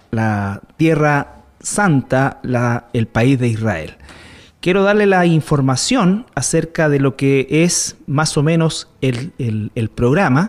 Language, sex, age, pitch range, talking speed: Spanish, male, 30-49, 130-185 Hz, 125 wpm